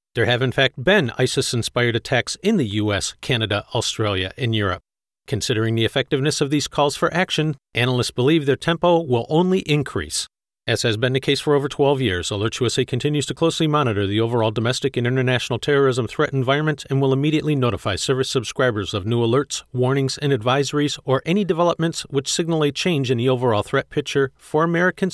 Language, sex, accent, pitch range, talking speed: English, male, American, 120-150 Hz, 185 wpm